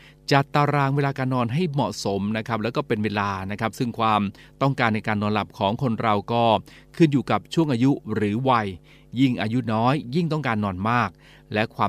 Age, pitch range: 20-39, 105-135 Hz